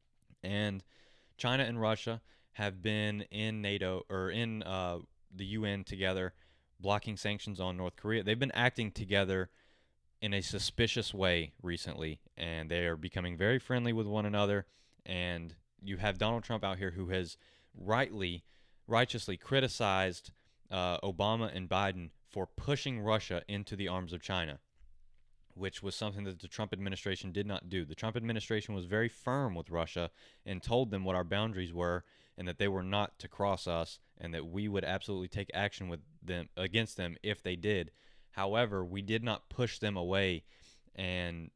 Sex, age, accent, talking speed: male, 20-39, American, 165 wpm